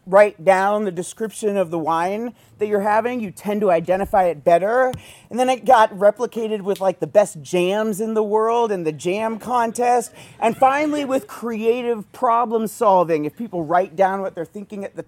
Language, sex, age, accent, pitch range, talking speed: English, male, 30-49, American, 180-235 Hz, 190 wpm